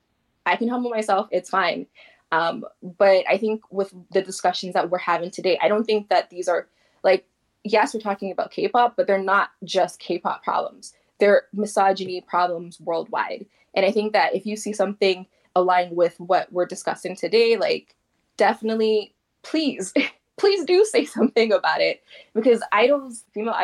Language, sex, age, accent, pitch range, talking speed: English, female, 20-39, American, 180-220 Hz, 165 wpm